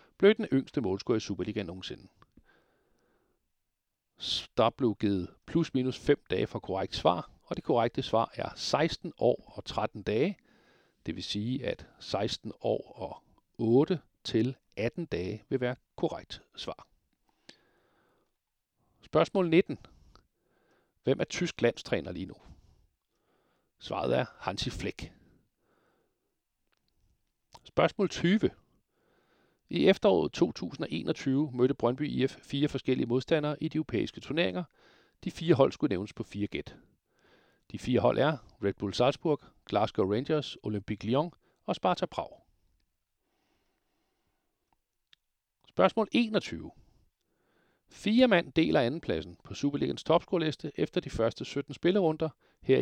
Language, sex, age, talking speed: Danish, male, 60-79, 120 wpm